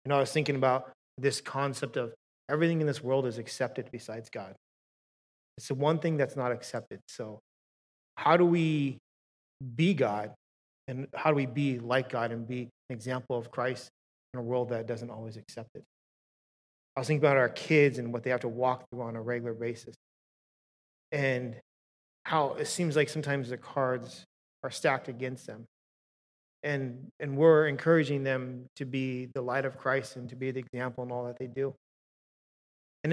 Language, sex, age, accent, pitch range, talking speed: English, male, 30-49, American, 120-145 Hz, 185 wpm